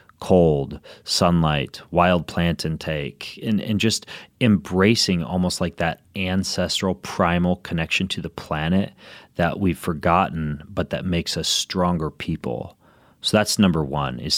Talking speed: 135 wpm